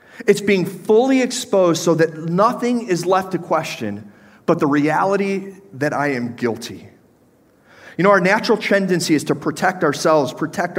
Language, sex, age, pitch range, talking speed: English, male, 30-49, 150-200 Hz, 155 wpm